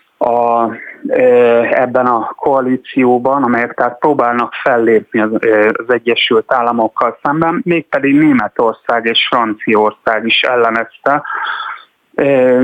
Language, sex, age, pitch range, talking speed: Hungarian, male, 30-49, 110-130 Hz, 95 wpm